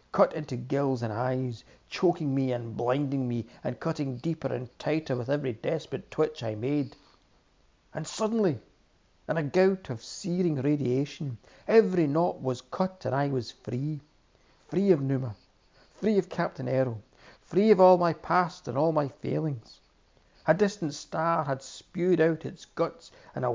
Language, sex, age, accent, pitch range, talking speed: English, male, 60-79, British, 125-170 Hz, 160 wpm